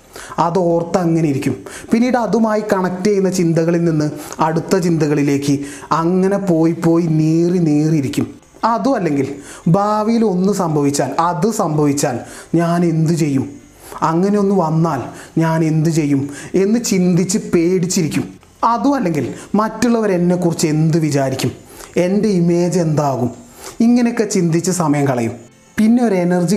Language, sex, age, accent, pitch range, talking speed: Malayalam, male, 30-49, native, 145-200 Hz, 115 wpm